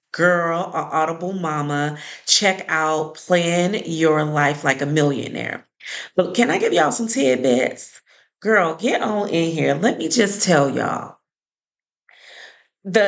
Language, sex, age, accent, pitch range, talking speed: English, female, 30-49, American, 155-210 Hz, 140 wpm